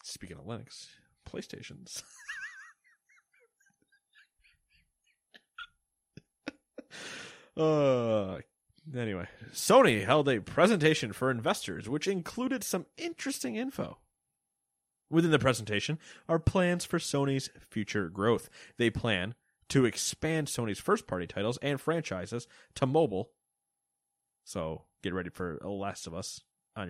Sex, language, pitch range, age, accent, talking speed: male, English, 105-155 Hz, 30-49, American, 105 wpm